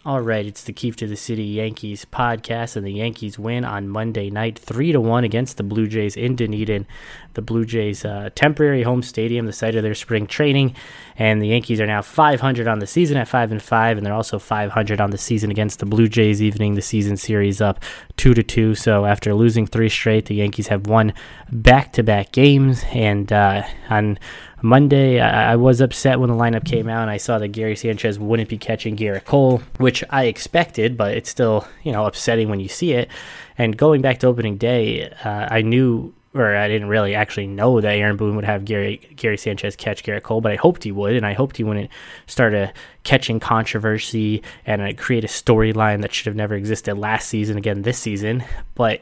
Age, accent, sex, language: 20-39, American, male, English